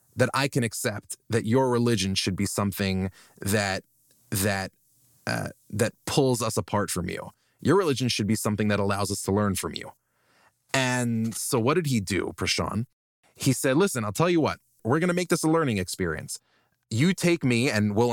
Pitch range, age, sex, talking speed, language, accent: 105-135 Hz, 20-39, male, 190 wpm, English, American